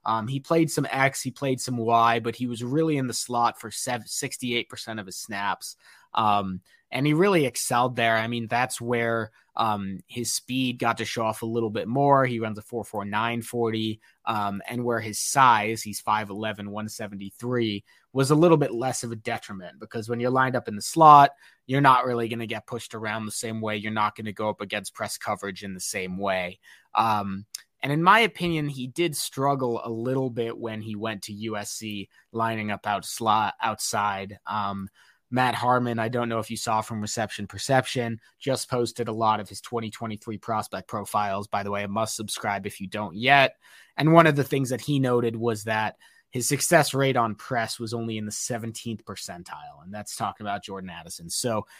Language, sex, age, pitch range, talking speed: English, male, 20-39, 105-130 Hz, 205 wpm